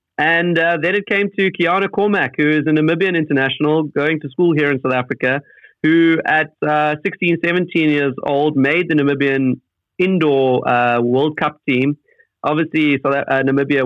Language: English